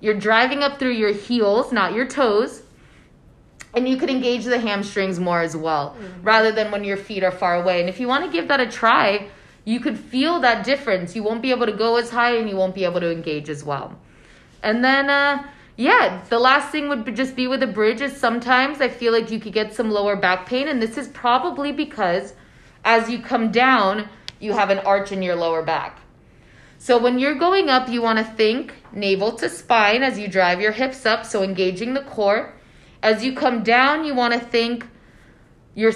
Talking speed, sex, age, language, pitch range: 215 wpm, female, 20-39, English, 200-260 Hz